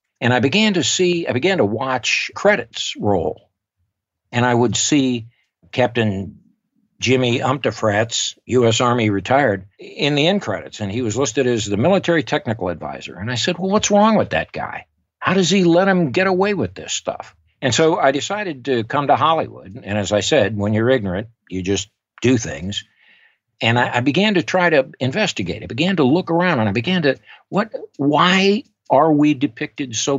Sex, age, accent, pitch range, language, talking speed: male, 60-79, American, 105-160 Hz, English, 190 wpm